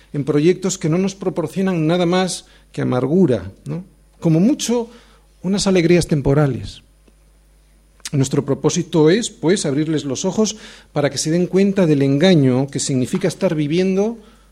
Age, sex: 40-59, male